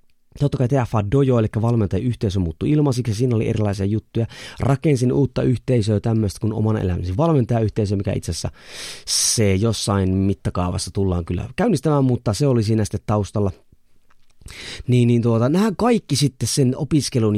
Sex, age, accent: male, 30-49, native